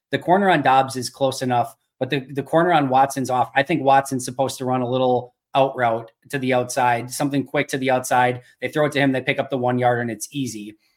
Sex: male